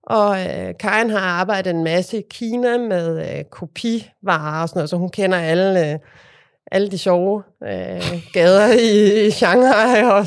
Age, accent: 30-49, Danish